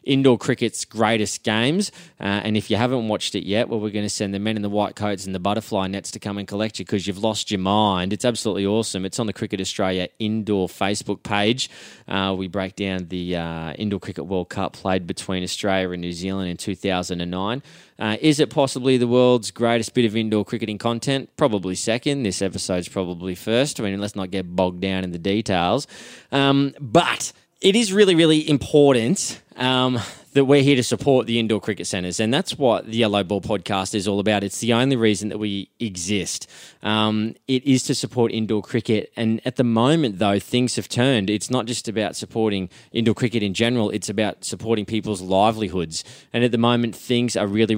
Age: 20-39